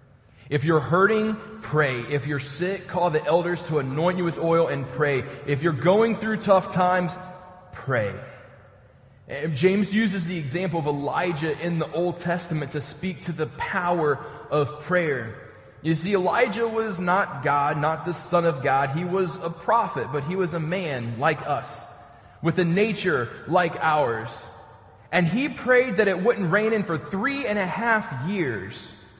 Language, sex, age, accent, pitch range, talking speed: English, male, 20-39, American, 120-170 Hz, 170 wpm